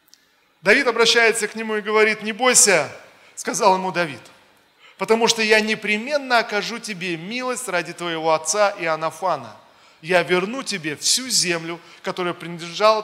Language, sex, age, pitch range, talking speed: Russian, male, 20-39, 160-210 Hz, 140 wpm